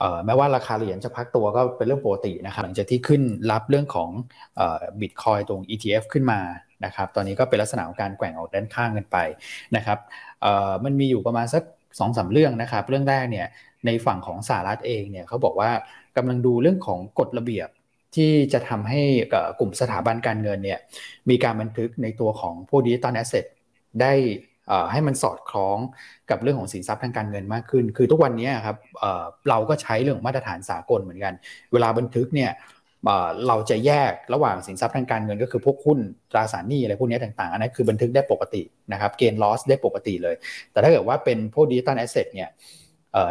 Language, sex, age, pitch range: Thai, male, 20-39, 110-135 Hz